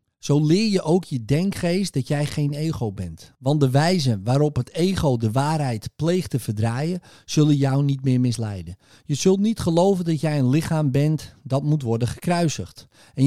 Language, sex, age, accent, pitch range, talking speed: Dutch, male, 40-59, Dutch, 125-170 Hz, 185 wpm